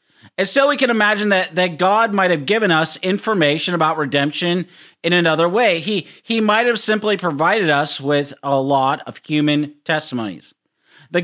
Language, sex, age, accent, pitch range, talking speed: English, male, 40-59, American, 150-205 Hz, 170 wpm